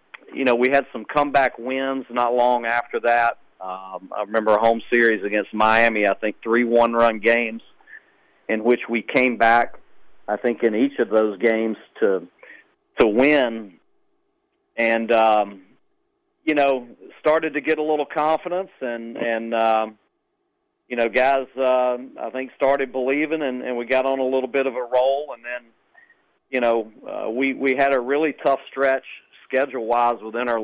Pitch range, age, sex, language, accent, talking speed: 115-135 Hz, 40-59, male, English, American, 170 wpm